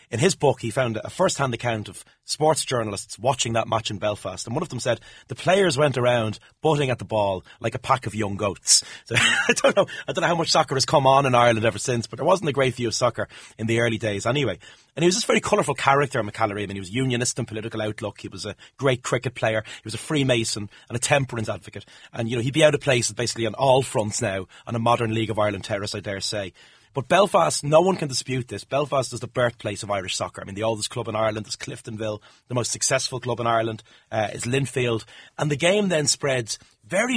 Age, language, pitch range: 30-49, English, 110-135 Hz